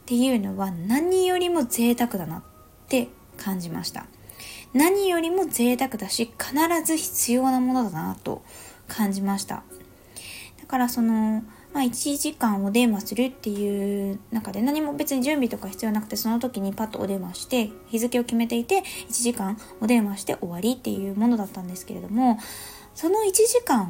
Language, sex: Japanese, female